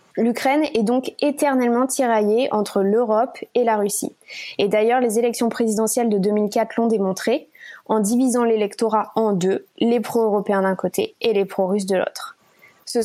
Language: French